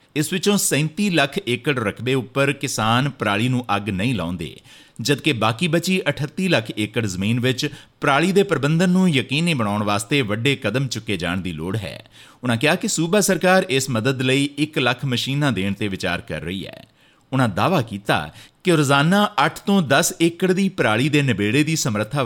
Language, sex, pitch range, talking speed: Punjabi, male, 110-160 Hz, 185 wpm